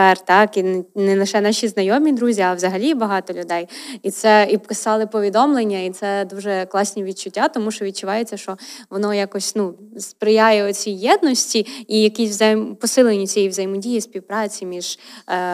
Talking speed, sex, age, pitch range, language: 150 wpm, female, 20-39, 195-225 Hz, Ukrainian